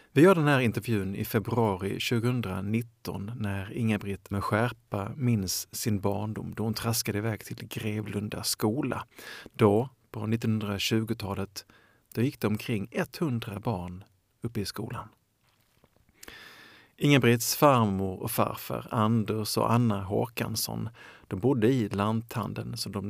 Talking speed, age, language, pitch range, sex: 125 wpm, 50-69, Swedish, 100-115 Hz, male